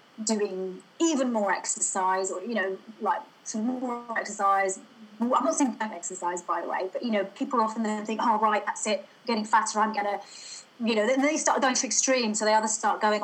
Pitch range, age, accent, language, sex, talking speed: 205-250 Hz, 30-49, British, English, female, 220 wpm